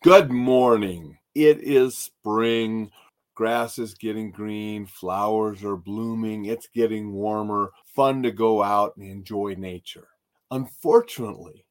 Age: 40-59